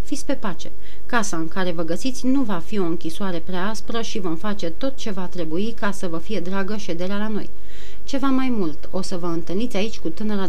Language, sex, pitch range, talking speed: Romanian, female, 170-210 Hz, 225 wpm